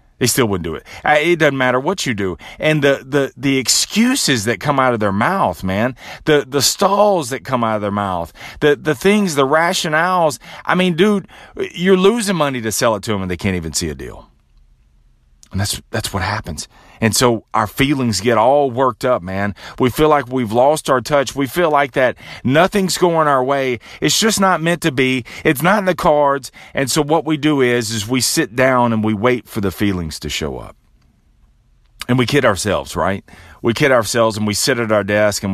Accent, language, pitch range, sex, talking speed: American, English, 110-150 Hz, male, 220 wpm